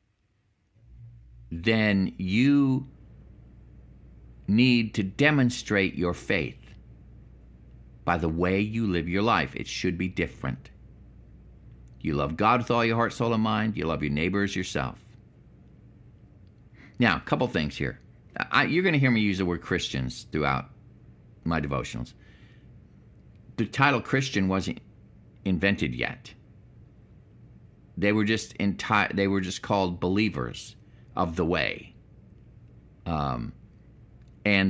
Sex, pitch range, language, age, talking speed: male, 85-115 Hz, English, 50-69, 125 wpm